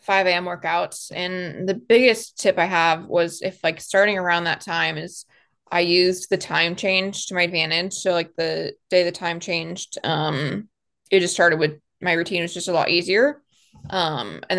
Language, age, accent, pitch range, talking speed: English, 20-39, American, 165-190 Hz, 185 wpm